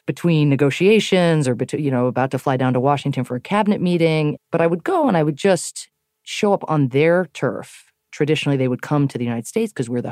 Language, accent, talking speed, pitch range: English, American, 230 wpm, 125-155 Hz